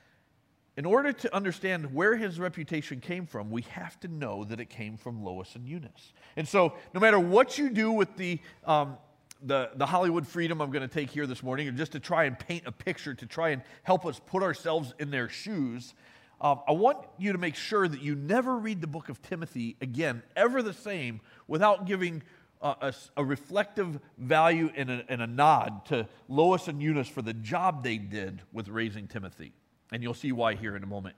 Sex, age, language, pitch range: male, 40-59, English, 125-175 Hz